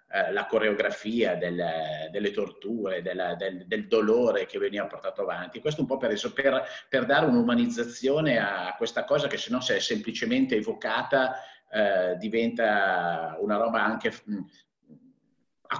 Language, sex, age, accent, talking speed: Italian, male, 50-69, native, 140 wpm